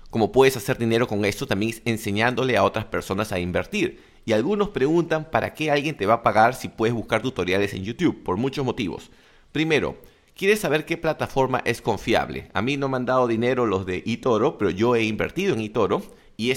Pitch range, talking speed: 105-135 Hz, 205 wpm